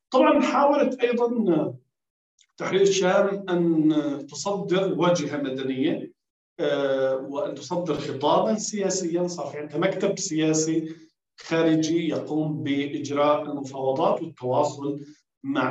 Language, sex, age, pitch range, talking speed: Arabic, male, 50-69, 145-195 Hz, 90 wpm